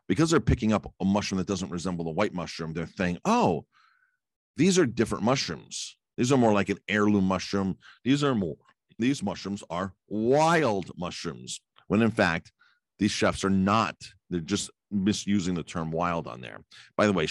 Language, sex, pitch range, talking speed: English, male, 70-95 Hz, 180 wpm